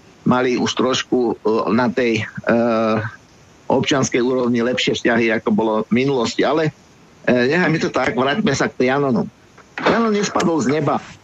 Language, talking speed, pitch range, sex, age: Slovak, 145 wpm, 130-155 Hz, male, 50-69